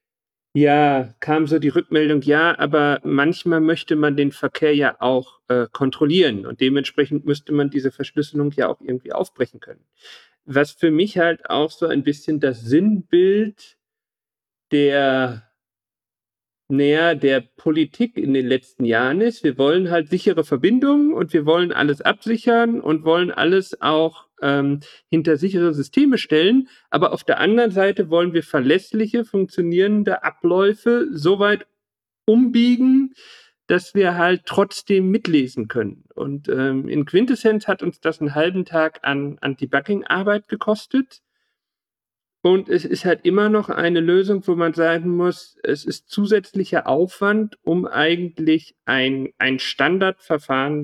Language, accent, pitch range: German, German, 145-205 Hz